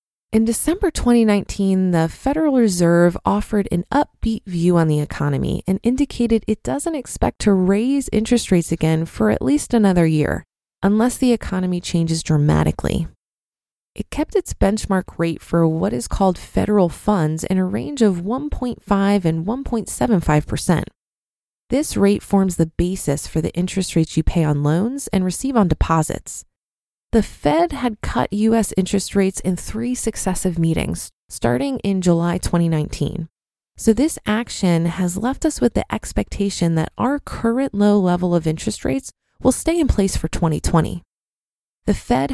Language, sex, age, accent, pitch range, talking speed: English, female, 20-39, American, 170-230 Hz, 155 wpm